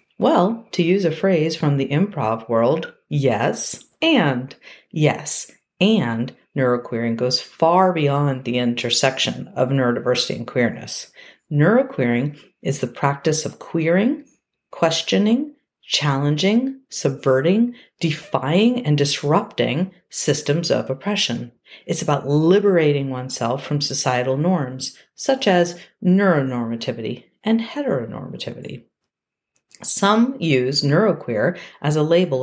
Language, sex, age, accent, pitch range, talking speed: English, female, 50-69, American, 135-210 Hz, 105 wpm